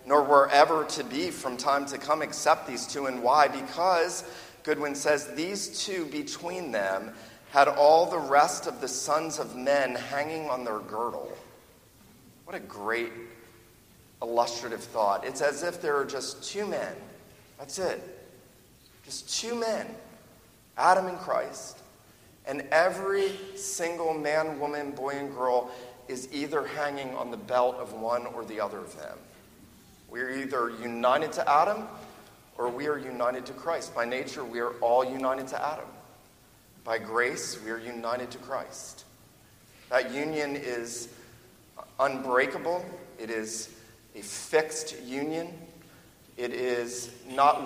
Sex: male